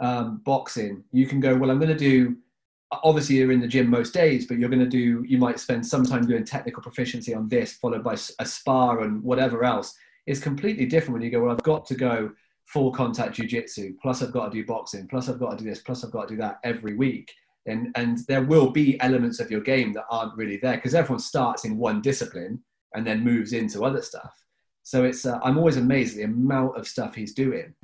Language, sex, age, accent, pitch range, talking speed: English, male, 30-49, British, 110-135 Hz, 240 wpm